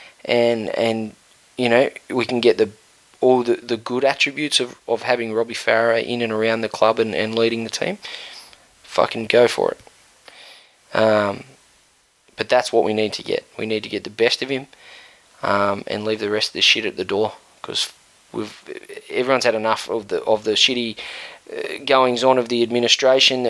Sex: male